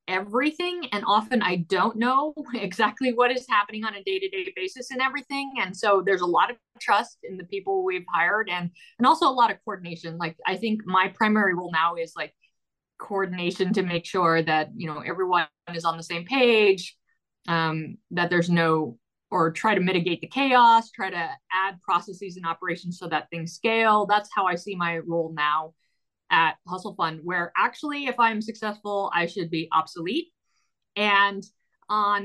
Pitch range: 175-230 Hz